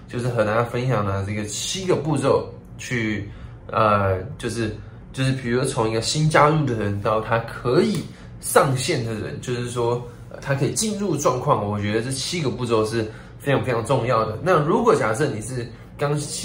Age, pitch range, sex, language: 20-39, 110-140 Hz, male, Chinese